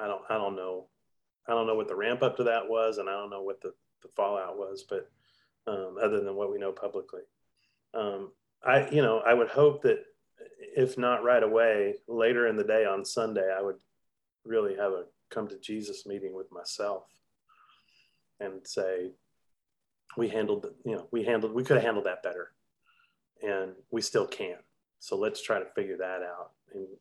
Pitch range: 100-170 Hz